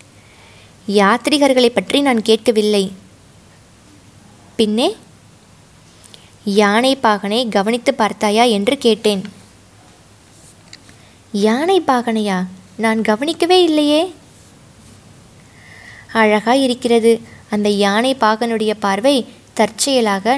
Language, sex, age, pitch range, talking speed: Tamil, female, 20-39, 200-250 Hz, 70 wpm